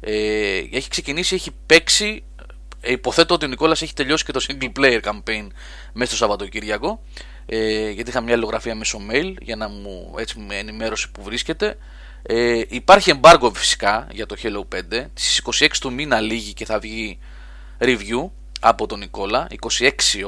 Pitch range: 105-150 Hz